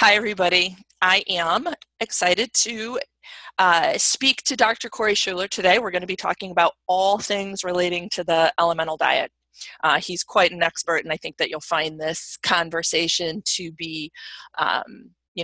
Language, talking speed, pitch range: English, 165 wpm, 170-210 Hz